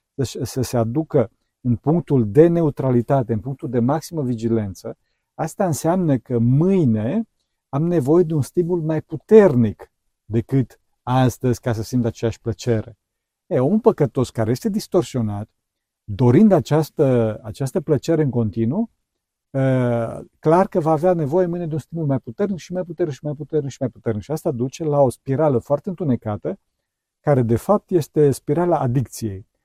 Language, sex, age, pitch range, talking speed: Romanian, male, 50-69, 115-160 Hz, 160 wpm